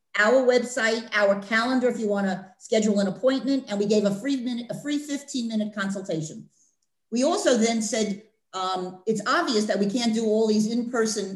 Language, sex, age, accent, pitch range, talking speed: English, female, 40-59, American, 200-255 Hz, 190 wpm